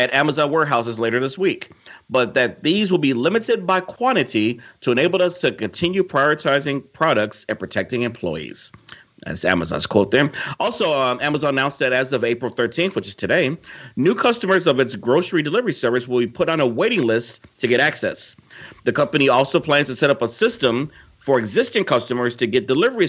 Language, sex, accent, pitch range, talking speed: English, male, American, 125-165 Hz, 185 wpm